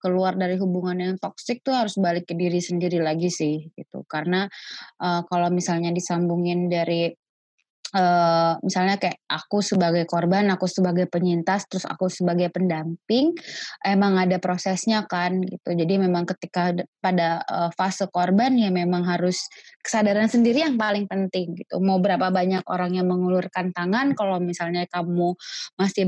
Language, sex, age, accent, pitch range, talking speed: Indonesian, female, 20-39, native, 175-200 Hz, 150 wpm